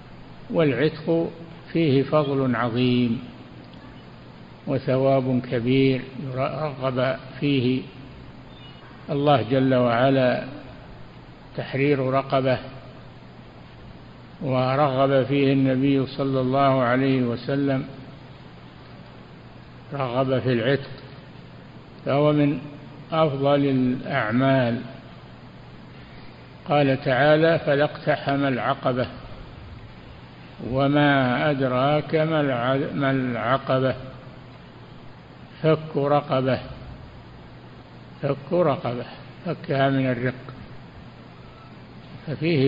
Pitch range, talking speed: 130-145 Hz, 60 wpm